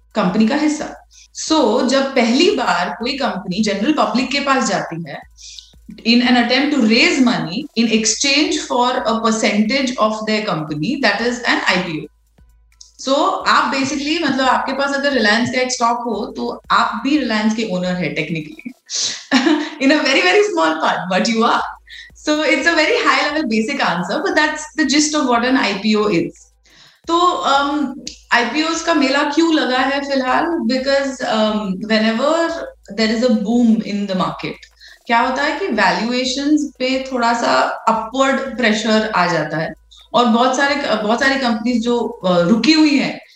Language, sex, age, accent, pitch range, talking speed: Hindi, female, 30-49, native, 215-280 Hz, 150 wpm